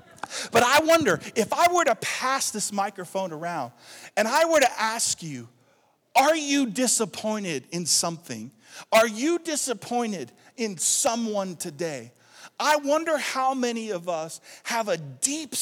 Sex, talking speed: male, 140 wpm